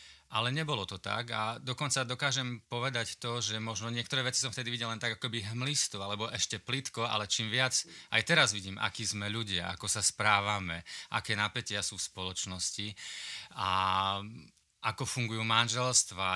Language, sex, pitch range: Slovak, male, 100-125 Hz